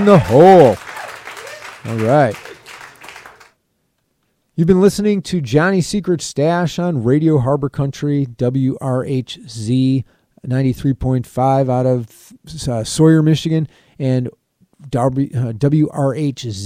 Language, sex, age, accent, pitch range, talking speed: English, male, 30-49, American, 120-155 Hz, 85 wpm